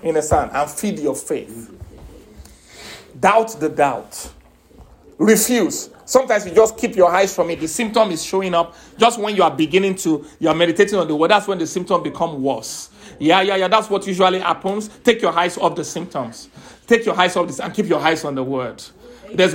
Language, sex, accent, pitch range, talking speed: English, male, Nigerian, 170-225 Hz, 205 wpm